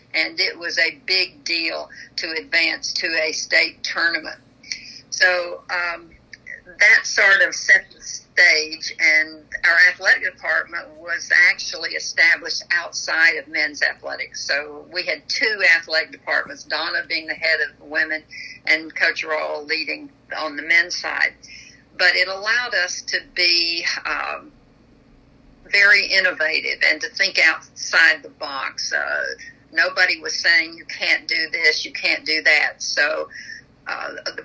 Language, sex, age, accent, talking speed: English, female, 50-69, American, 140 wpm